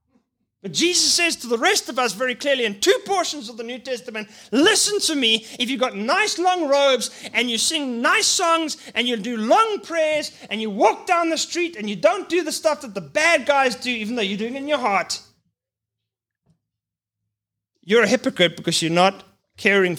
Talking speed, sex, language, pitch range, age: 200 wpm, male, English, 180-270 Hz, 30-49